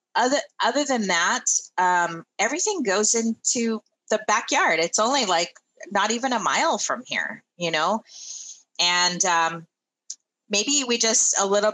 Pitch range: 170-220 Hz